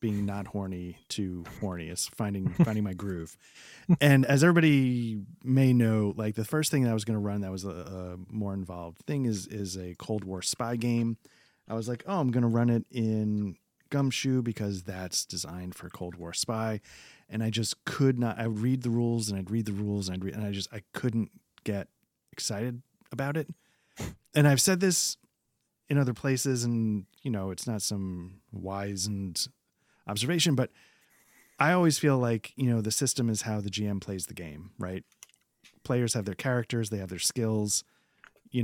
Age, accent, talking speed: 30-49, American, 195 wpm